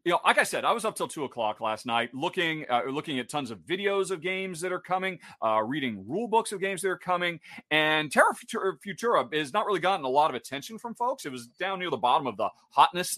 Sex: male